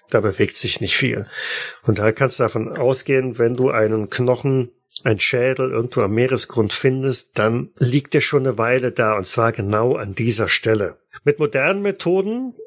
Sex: male